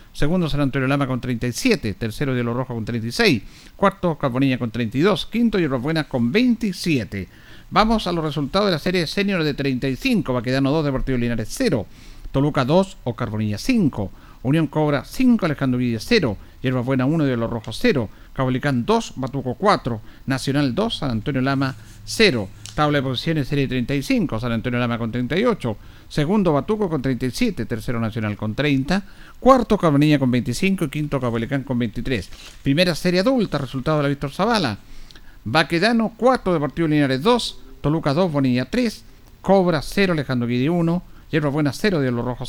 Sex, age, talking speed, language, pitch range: male, 50-69, 170 wpm, Spanish, 120-170 Hz